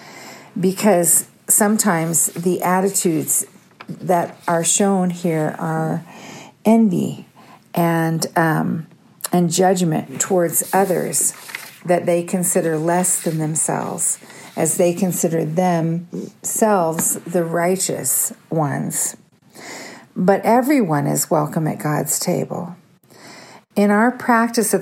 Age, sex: 50-69, female